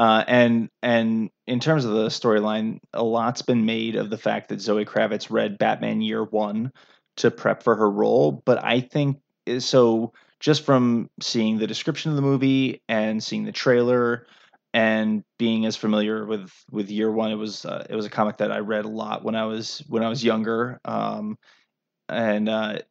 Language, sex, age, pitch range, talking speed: English, male, 20-39, 110-125 Hz, 190 wpm